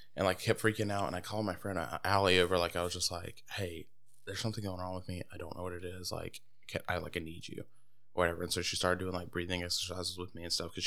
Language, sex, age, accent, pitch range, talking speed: English, male, 20-39, American, 90-105 Hz, 275 wpm